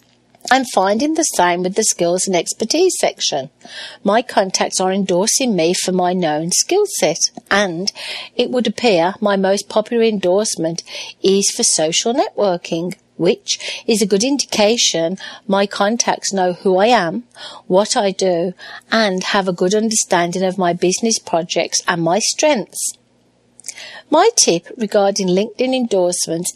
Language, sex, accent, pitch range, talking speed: English, female, British, 180-225 Hz, 140 wpm